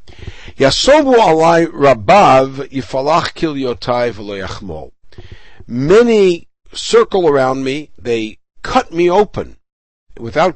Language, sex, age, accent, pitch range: English, male, 60-79, American, 120-175 Hz